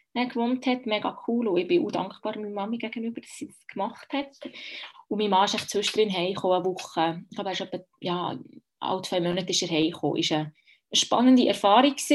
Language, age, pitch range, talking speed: German, 20-39, 200-250 Hz, 215 wpm